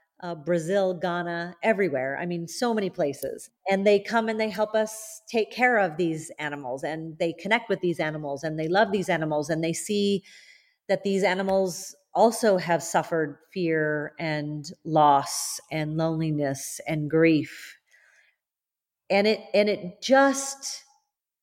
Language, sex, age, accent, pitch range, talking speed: English, female, 40-59, American, 170-230 Hz, 145 wpm